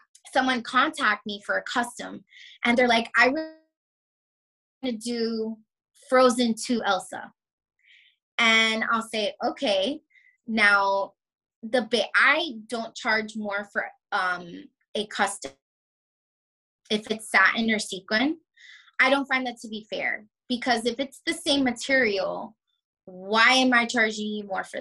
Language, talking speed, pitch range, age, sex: English, 135 wpm, 215-260 Hz, 20-39, female